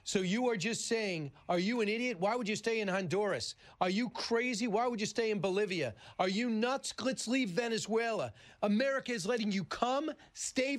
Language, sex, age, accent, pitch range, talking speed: English, male, 40-59, American, 180-230 Hz, 200 wpm